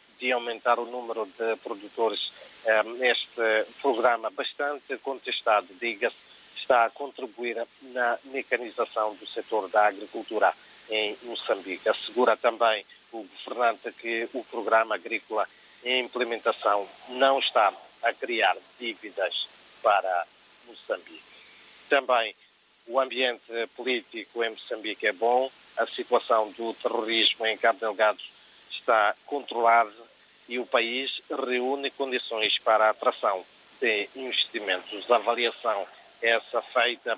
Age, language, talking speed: 50-69, Portuguese, 115 wpm